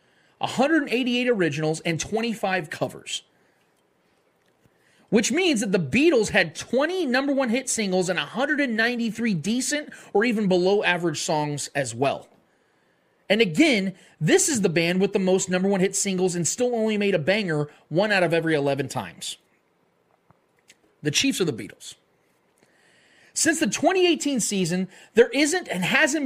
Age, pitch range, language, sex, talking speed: 30-49, 175-250 Hz, English, male, 145 wpm